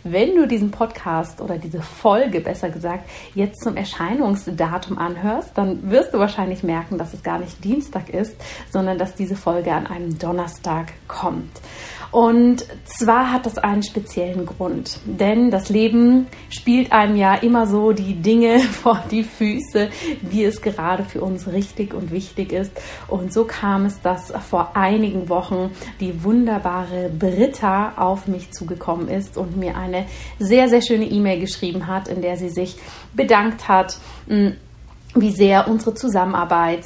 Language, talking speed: German, 155 wpm